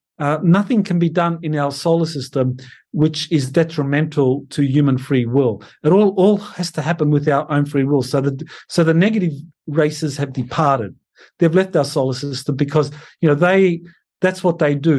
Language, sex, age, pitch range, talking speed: English, male, 50-69, 140-170 Hz, 190 wpm